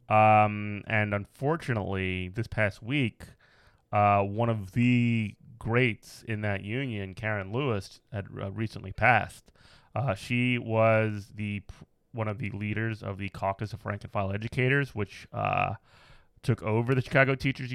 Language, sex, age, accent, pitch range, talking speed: English, male, 30-49, American, 105-125 Hz, 140 wpm